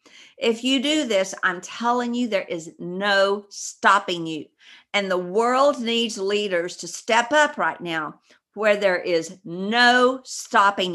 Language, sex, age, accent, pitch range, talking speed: English, female, 50-69, American, 185-240 Hz, 150 wpm